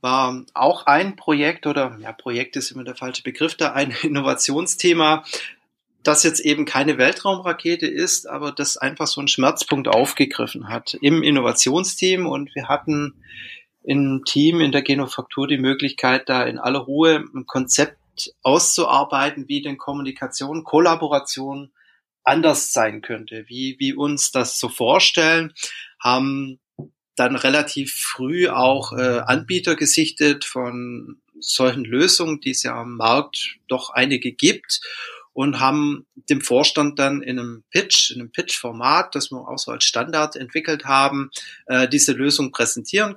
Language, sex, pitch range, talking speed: German, male, 130-155 Hz, 145 wpm